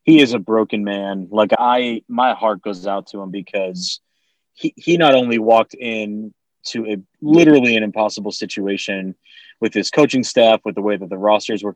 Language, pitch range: English, 105-120 Hz